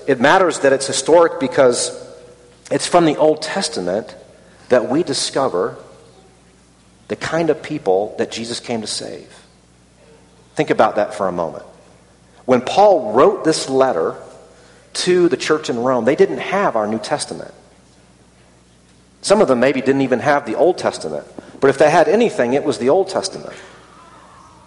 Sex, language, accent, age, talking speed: male, English, American, 40-59, 160 wpm